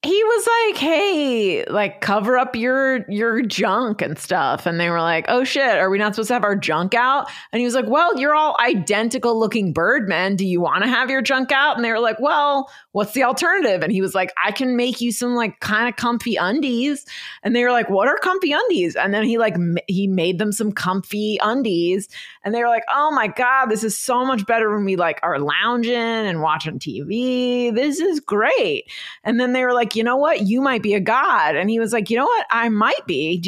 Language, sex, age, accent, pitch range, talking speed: English, female, 30-49, American, 190-255 Hz, 240 wpm